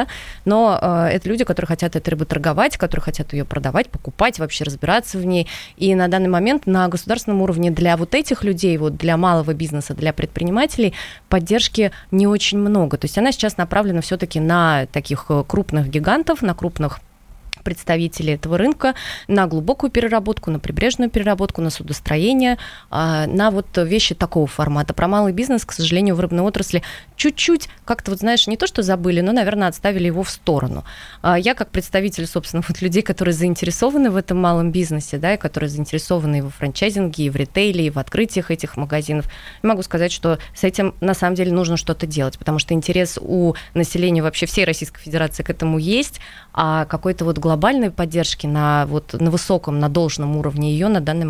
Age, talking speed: 20-39, 180 wpm